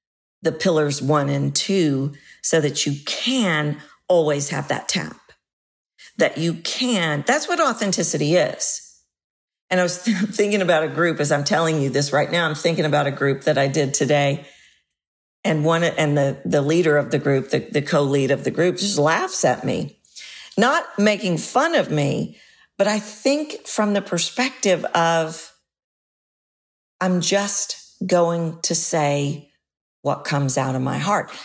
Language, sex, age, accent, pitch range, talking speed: English, female, 50-69, American, 145-200 Hz, 165 wpm